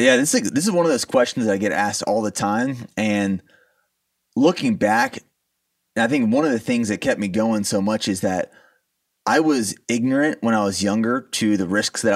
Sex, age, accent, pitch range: male, 30-49, American, 105-145 Hz